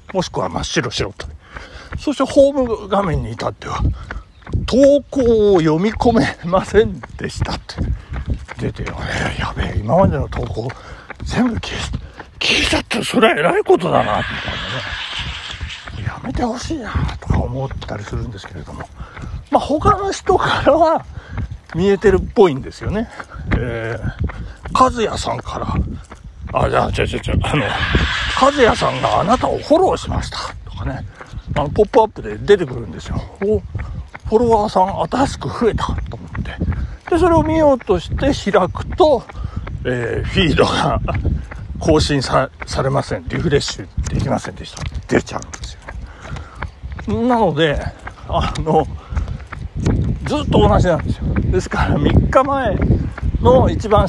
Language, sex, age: Japanese, male, 60-79